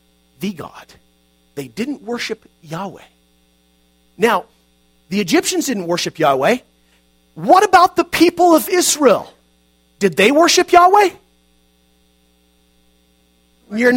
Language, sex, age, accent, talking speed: English, male, 40-59, American, 95 wpm